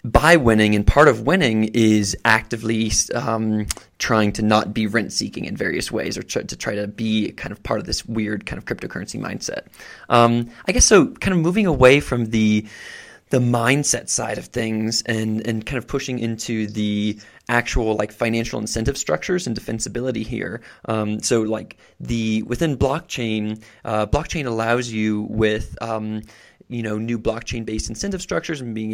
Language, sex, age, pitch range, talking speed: English, male, 20-39, 110-125 Hz, 170 wpm